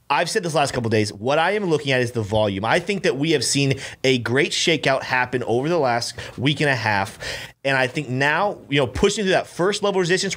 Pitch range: 125-170 Hz